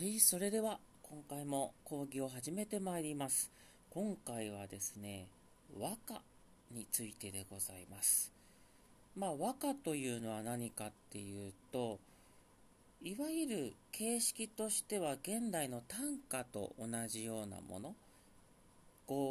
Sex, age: male, 40-59